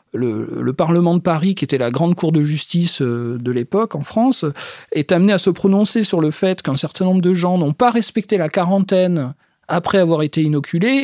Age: 40-59